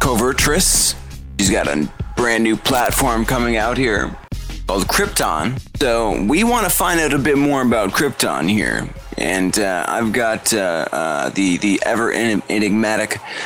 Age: 20-39